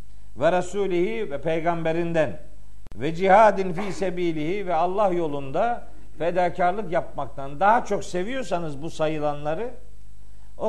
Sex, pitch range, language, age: male, 145-205 Hz, Turkish, 50-69